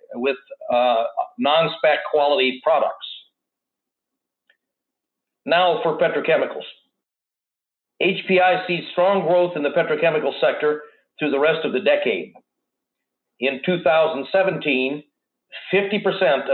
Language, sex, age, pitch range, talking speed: English, male, 50-69, 140-180 Hz, 85 wpm